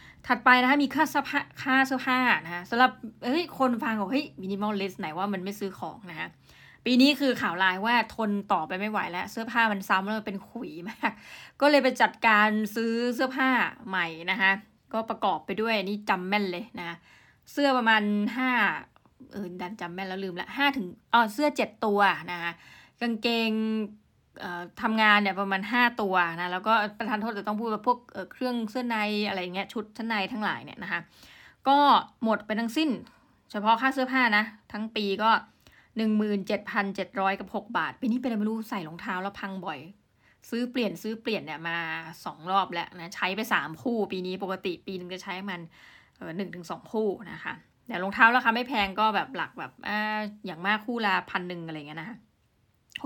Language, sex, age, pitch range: Thai, female, 20-39, 195-235 Hz